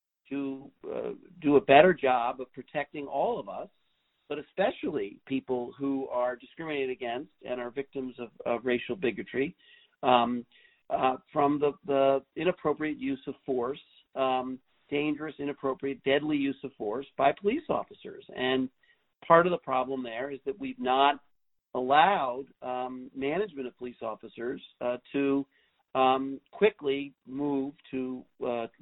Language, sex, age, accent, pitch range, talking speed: English, male, 50-69, American, 130-150 Hz, 140 wpm